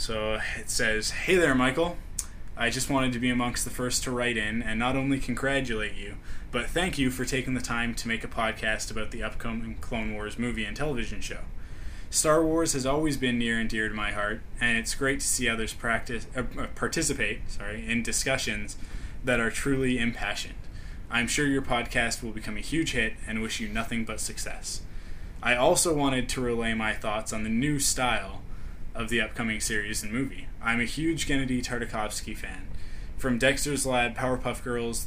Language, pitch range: English, 105-125 Hz